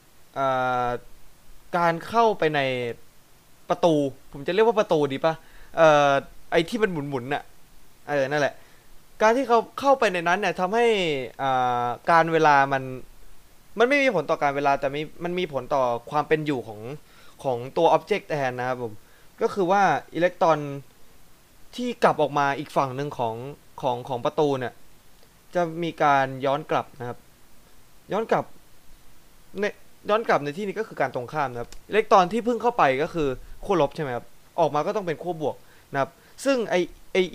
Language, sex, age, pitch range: Thai, male, 20-39, 135-190 Hz